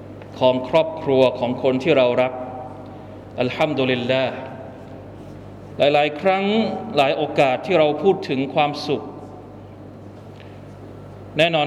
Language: Thai